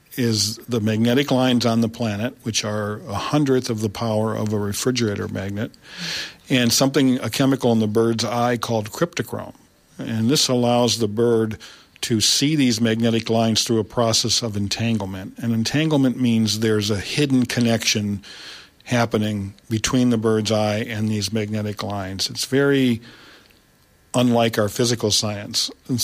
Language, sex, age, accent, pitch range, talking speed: English, male, 50-69, American, 110-125 Hz, 150 wpm